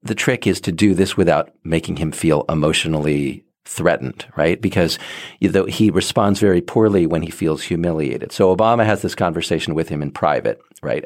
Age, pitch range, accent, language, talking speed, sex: 40-59, 85-110 Hz, American, English, 175 wpm, male